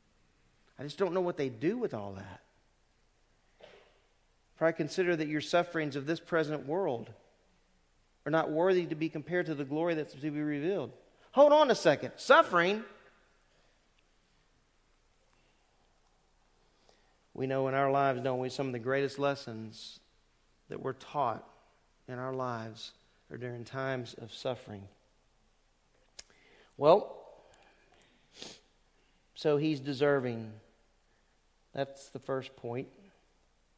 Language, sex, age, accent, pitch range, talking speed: English, male, 40-59, American, 130-200 Hz, 120 wpm